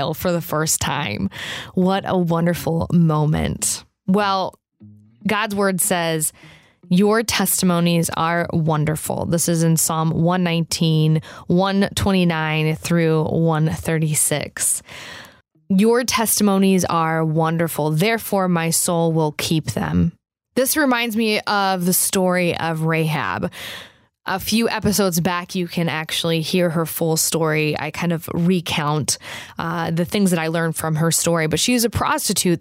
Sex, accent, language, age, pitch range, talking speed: female, American, English, 20-39, 160-195 Hz, 130 wpm